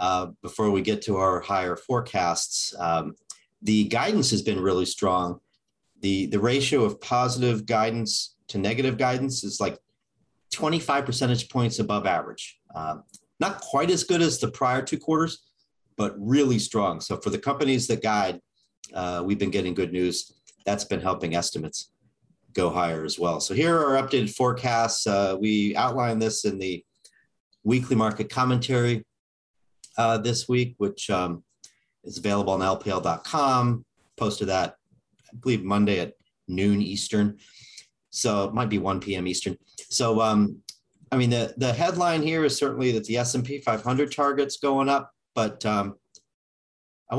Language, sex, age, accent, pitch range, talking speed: English, male, 40-59, American, 100-135 Hz, 160 wpm